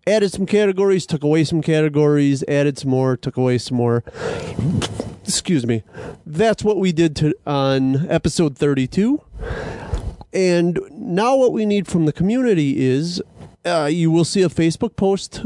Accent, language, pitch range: American, English, 135-175 Hz